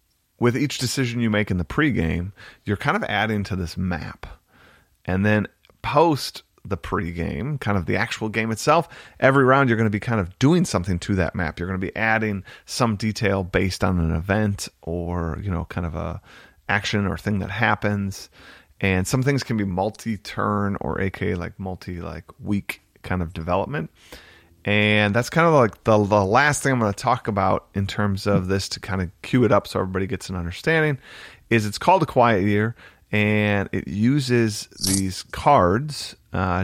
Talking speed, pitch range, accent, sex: 190 wpm, 95-115 Hz, American, male